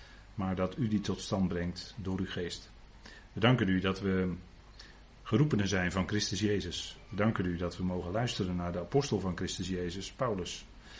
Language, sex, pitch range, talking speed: Dutch, male, 90-105 Hz, 185 wpm